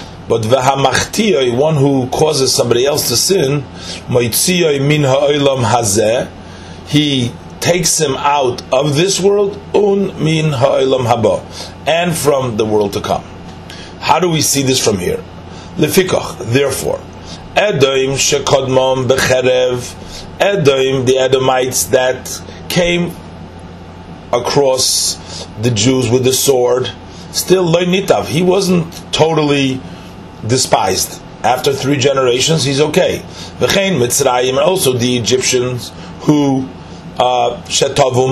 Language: English